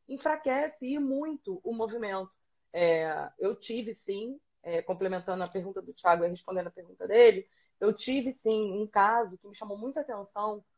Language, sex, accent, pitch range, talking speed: Portuguese, female, Brazilian, 180-255 Hz, 150 wpm